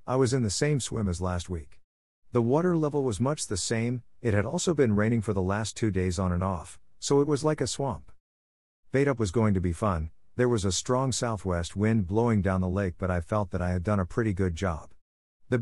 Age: 50-69